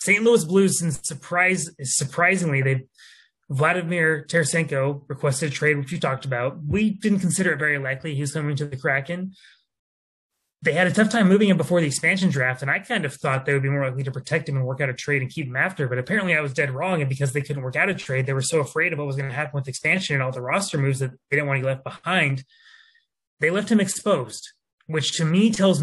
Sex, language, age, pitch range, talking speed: male, English, 20-39, 135-180 Hz, 245 wpm